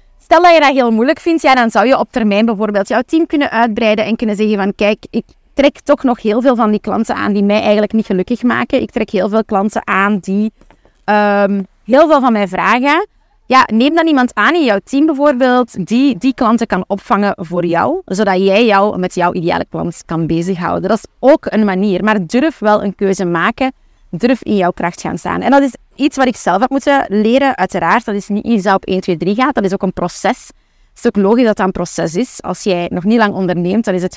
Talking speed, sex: 240 wpm, female